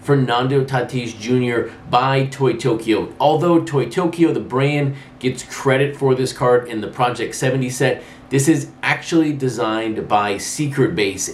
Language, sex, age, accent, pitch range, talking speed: English, male, 30-49, American, 120-150 Hz, 150 wpm